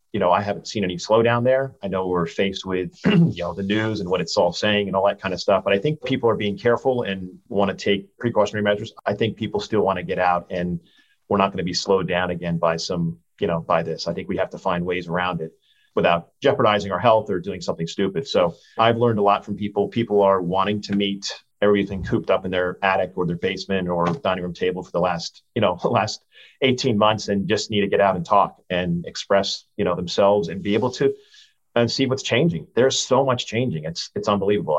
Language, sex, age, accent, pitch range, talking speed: English, male, 40-59, American, 90-105 Hz, 245 wpm